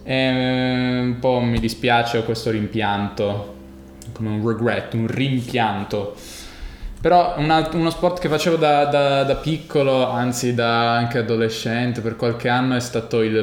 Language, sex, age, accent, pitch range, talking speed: Italian, male, 20-39, native, 110-125 Hz, 145 wpm